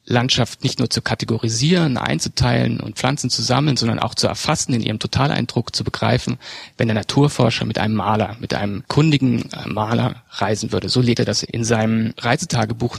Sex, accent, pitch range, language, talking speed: male, German, 115-135 Hz, German, 175 wpm